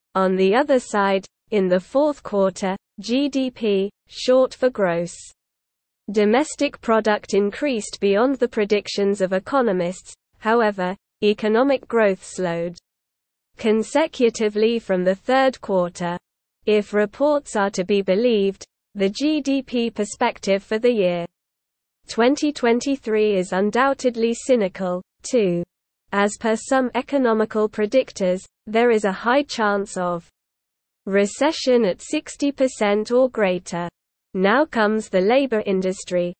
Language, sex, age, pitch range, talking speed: English, female, 20-39, 190-250 Hz, 110 wpm